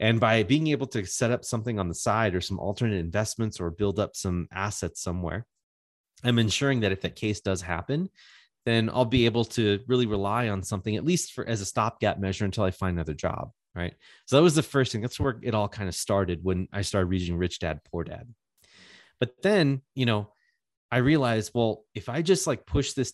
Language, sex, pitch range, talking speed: English, male, 100-125 Hz, 220 wpm